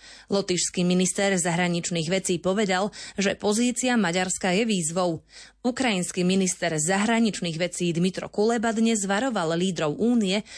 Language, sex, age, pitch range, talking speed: Slovak, female, 30-49, 180-225 Hz, 110 wpm